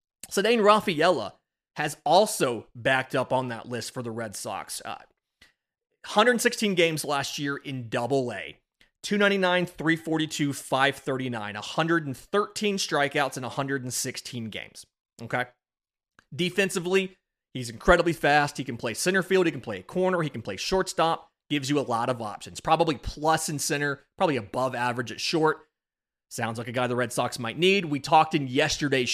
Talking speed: 155 wpm